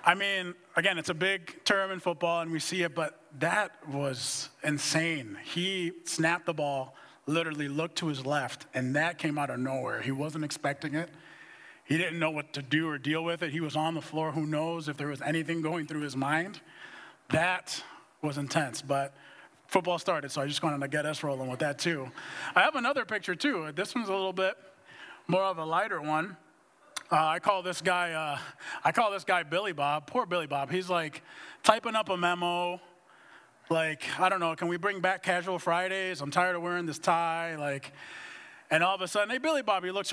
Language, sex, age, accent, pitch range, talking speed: English, male, 30-49, American, 150-180 Hz, 210 wpm